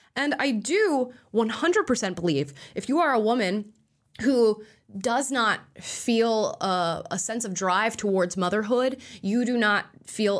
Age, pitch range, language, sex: 20-39, 165-205 Hz, English, female